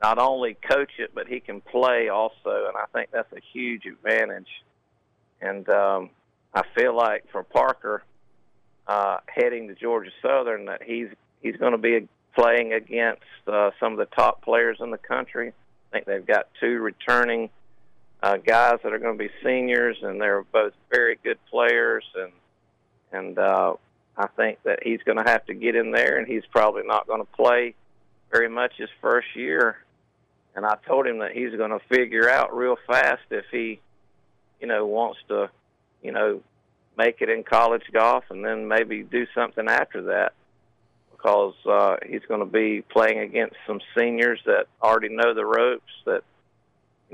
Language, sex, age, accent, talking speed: English, male, 50-69, American, 180 wpm